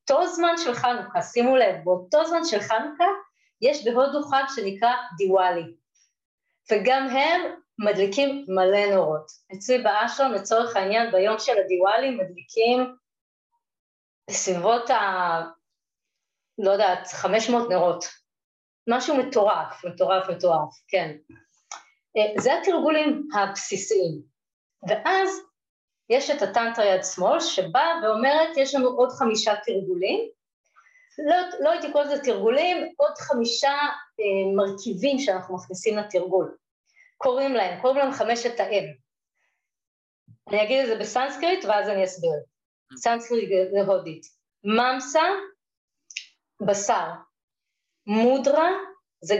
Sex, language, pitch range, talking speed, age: female, Hebrew, 195-280 Hz, 110 wpm, 30-49